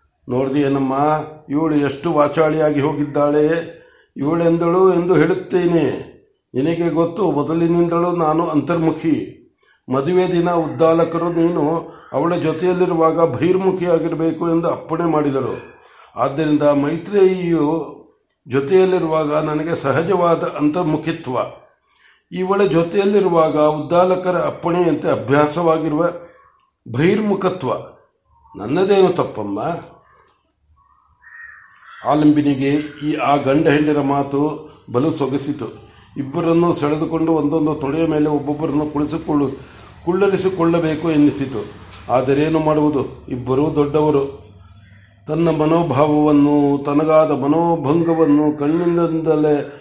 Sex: male